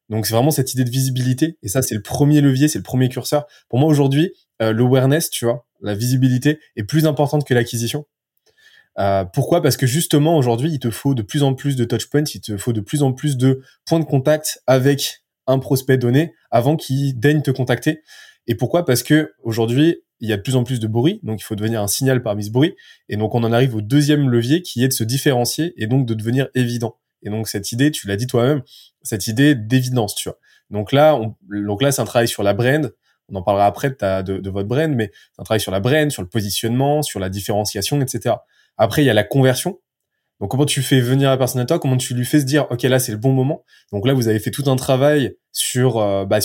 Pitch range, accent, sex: 110-140 Hz, French, male